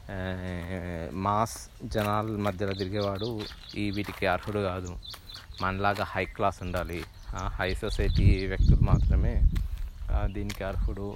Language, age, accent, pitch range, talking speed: Telugu, 20-39, native, 95-110 Hz, 95 wpm